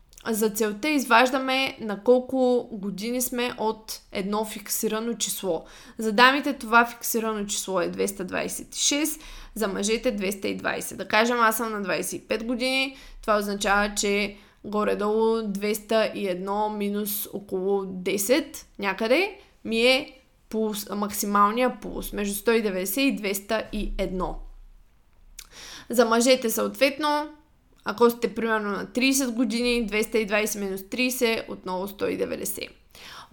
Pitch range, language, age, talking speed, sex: 215-265 Hz, Bulgarian, 20-39, 110 wpm, female